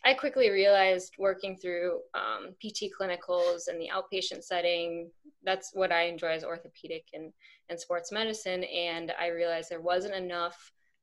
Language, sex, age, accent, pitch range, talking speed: English, female, 10-29, American, 170-200 Hz, 150 wpm